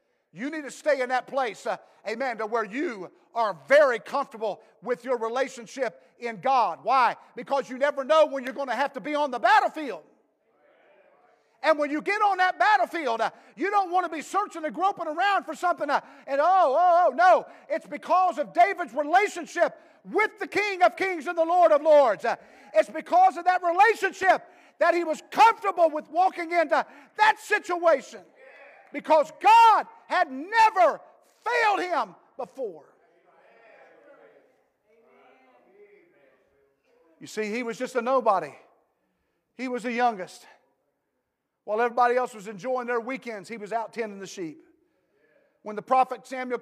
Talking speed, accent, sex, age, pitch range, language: 160 wpm, American, male, 50-69, 230-345 Hz, English